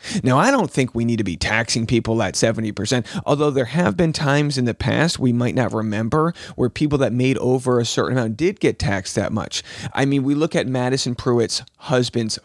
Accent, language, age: American, English, 30-49